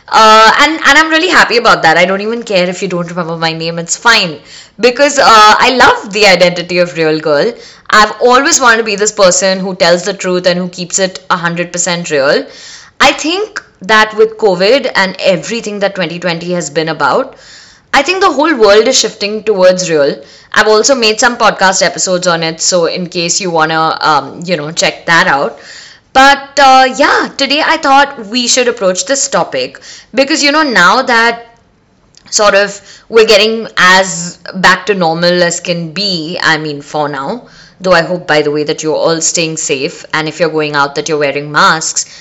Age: 20-39